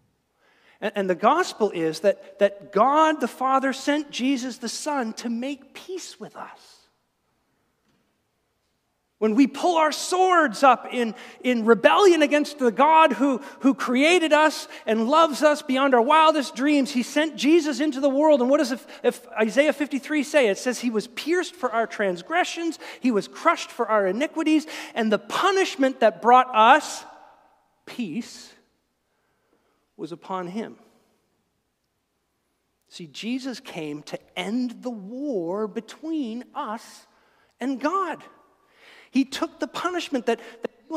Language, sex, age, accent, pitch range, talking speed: English, male, 40-59, American, 230-310 Hz, 140 wpm